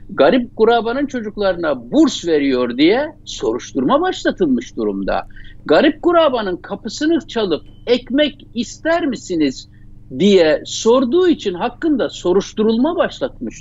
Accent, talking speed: native, 95 wpm